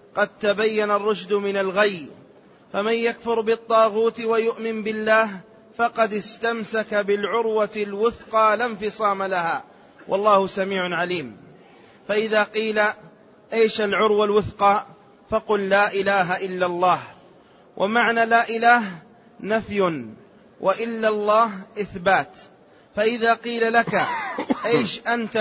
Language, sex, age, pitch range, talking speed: Arabic, male, 30-49, 200-230 Hz, 100 wpm